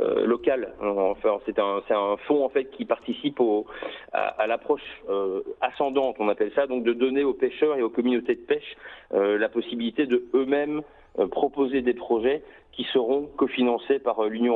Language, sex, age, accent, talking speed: French, male, 40-59, French, 175 wpm